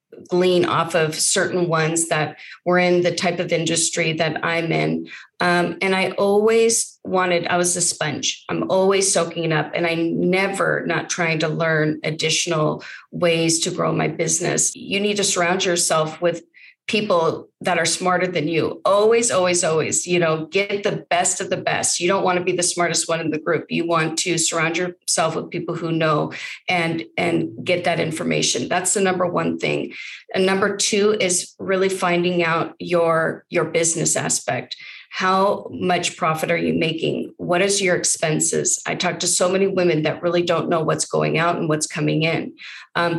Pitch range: 165-185 Hz